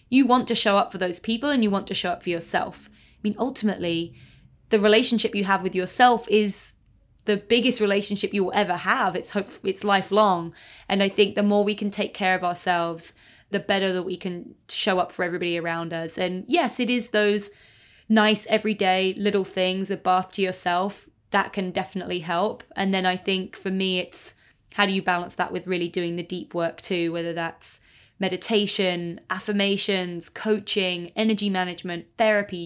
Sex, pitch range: female, 175-205 Hz